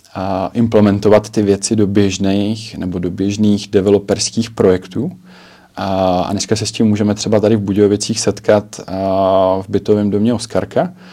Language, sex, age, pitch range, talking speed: Czech, male, 20-39, 100-115 Hz, 135 wpm